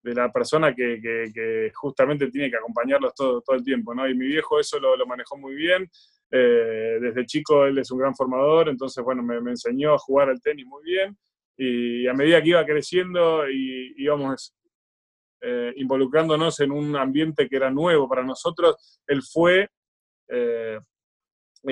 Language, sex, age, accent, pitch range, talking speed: Spanish, male, 20-39, Argentinian, 130-185 Hz, 175 wpm